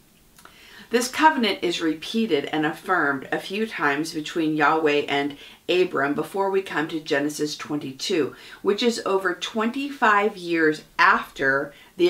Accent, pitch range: American, 150-200 Hz